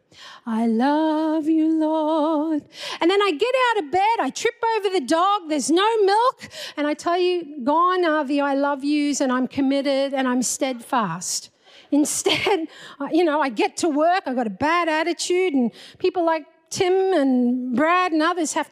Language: English